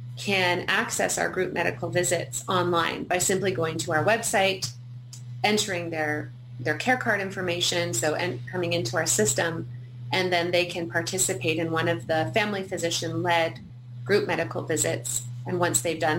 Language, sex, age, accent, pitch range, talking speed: English, female, 30-49, American, 125-190 Hz, 160 wpm